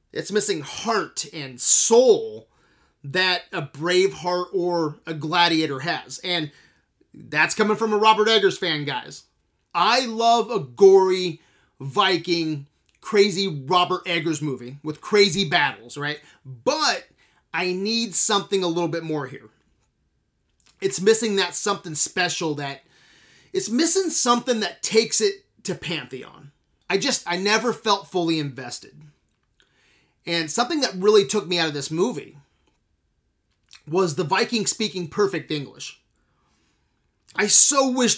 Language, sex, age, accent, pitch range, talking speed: English, male, 30-49, American, 155-205 Hz, 130 wpm